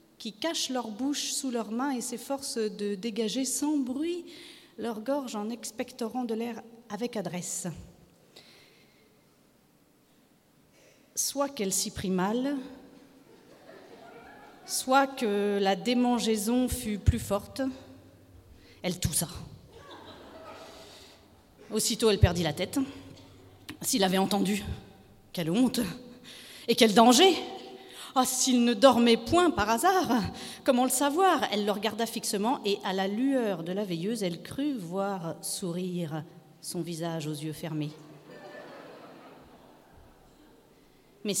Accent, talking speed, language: French, 115 wpm, French